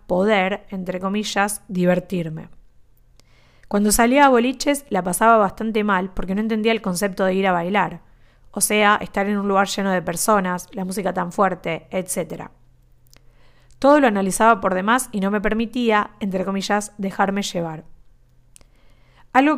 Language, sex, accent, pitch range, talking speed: Spanish, female, Argentinian, 180-230 Hz, 150 wpm